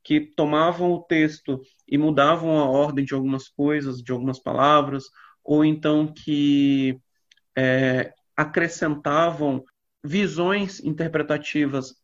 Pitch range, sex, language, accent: 145-180 Hz, male, Portuguese, Brazilian